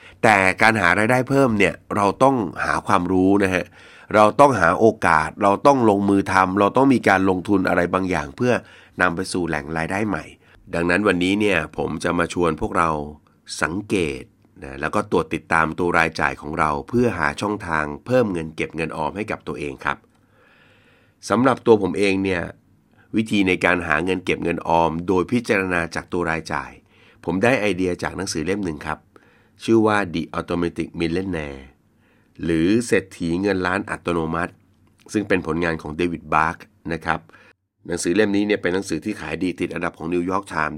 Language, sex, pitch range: Thai, male, 80-100 Hz